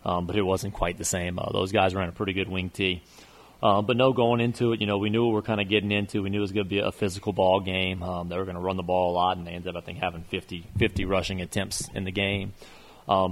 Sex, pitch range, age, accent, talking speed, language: male, 90-100 Hz, 30-49, American, 310 wpm, English